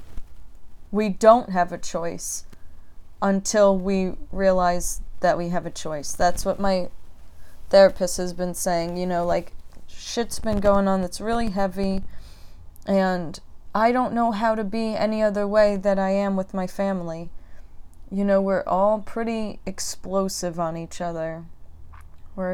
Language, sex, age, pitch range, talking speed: English, female, 20-39, 165-200 Hz, 150 wpm